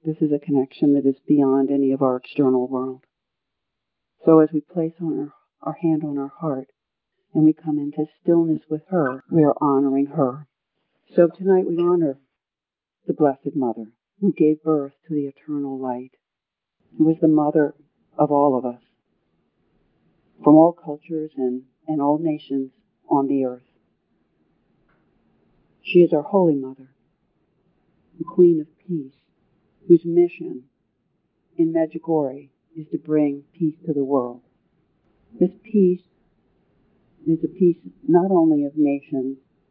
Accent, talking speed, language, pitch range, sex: American, 145 wpm, English, 135-170 Hz, female